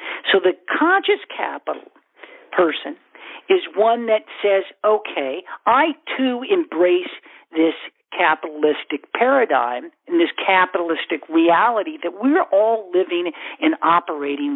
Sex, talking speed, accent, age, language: male, 105 wpm, American, 50-69, English